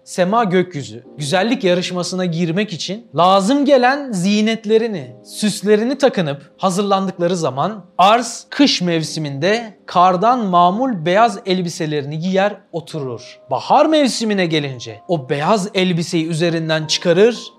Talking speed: 100 wpm